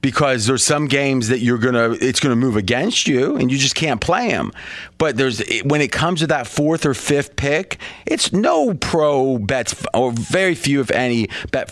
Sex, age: male, 30-49